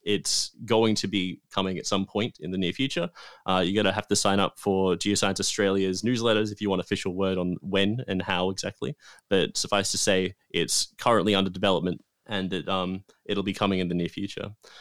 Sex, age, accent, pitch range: male, 20-39, Australian, 95-105 Hz